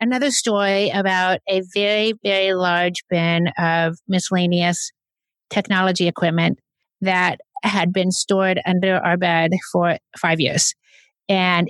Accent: American